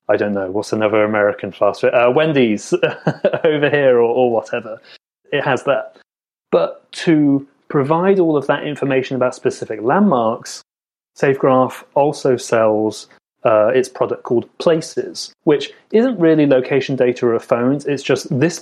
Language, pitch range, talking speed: English, 115-150 Hz, 150 wpm